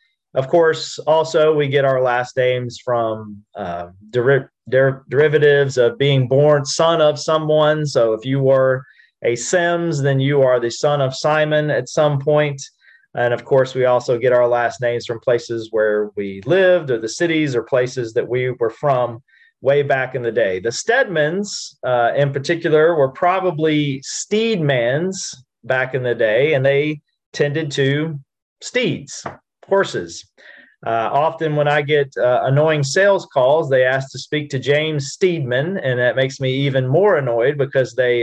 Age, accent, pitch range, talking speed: 30-49, American, 125-155 Hz, 165 wpm